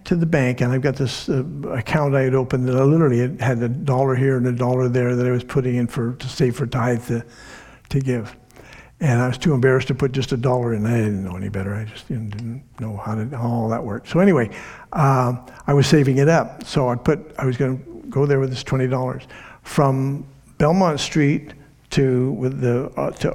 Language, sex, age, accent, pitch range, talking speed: English, male, 60-79, American, 125-155 Hz, 230 wpm